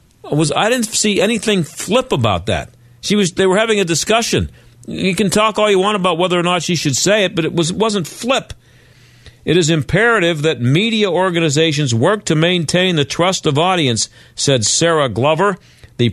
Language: English